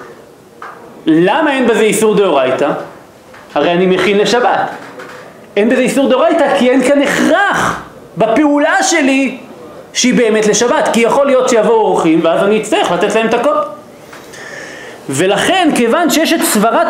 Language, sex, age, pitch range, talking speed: Hebrew, male, 40-59, 225-295 Hz, 140 wpm